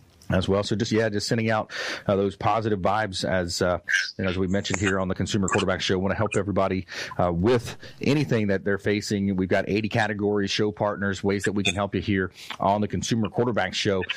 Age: 30-49